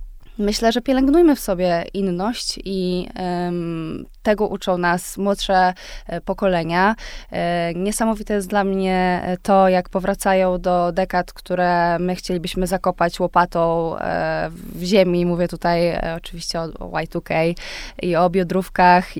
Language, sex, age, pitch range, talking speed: Polish, female, 20-39, 180-210 Hz, 115 wpm